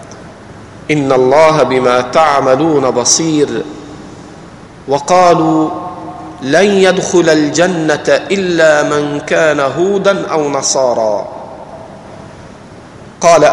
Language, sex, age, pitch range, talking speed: Arabic, male, 50-69, 145-180 Hz, 70 wpm